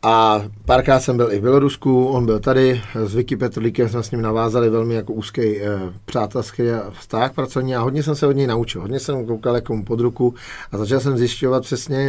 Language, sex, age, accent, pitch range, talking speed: Czech, male, 40-59, native, 115-130 Hz, 210 wpm